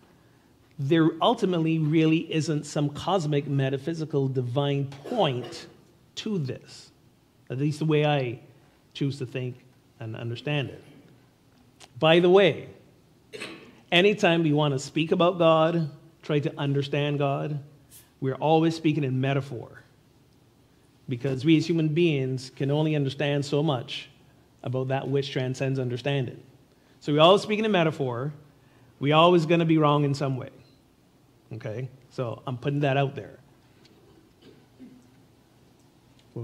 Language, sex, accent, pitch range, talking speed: English, male, American, 135-165 Hz, 130 wpm